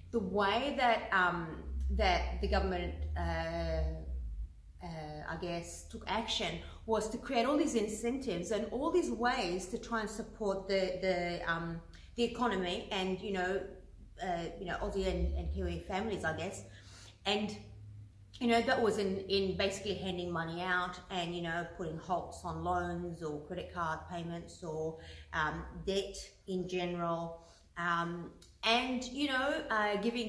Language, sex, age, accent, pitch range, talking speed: English, female, 30-49, Australian, 170-215 Hz, 155 wpm